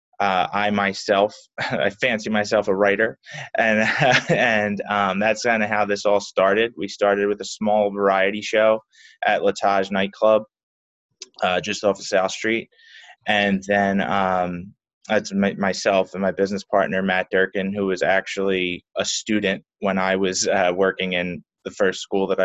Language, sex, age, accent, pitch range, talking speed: English, male, 20-39, American, 95-110 Hz, 160 wpm